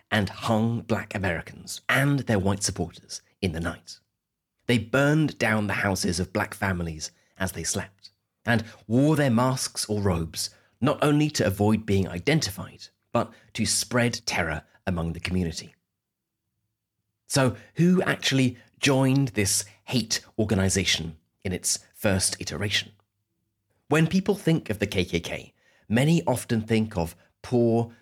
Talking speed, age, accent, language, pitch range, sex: 135 wpm, 30-49, British, English, 95-125 Hz, male